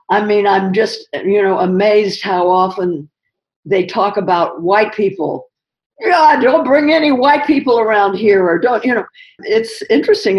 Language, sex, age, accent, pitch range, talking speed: English, female, 50-69, American, 150-195 Hz, 160 wpm